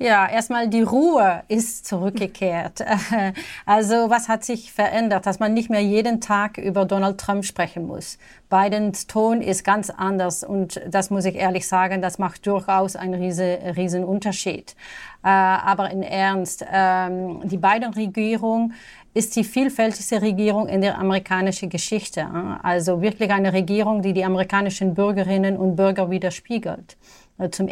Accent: German